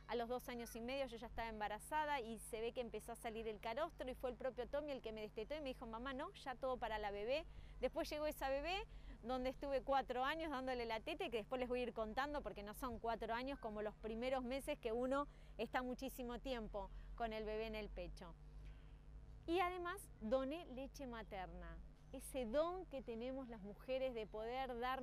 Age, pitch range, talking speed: 20-39, 225-280 Hz, 215 wpm